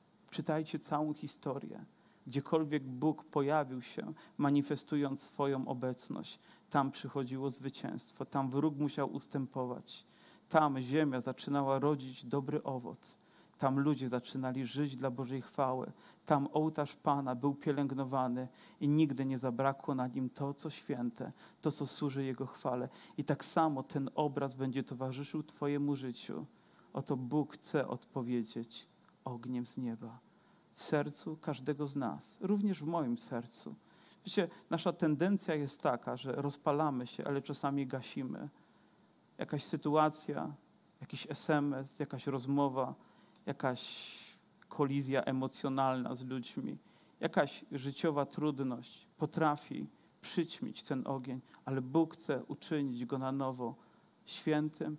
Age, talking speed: 40-59, 120 wpm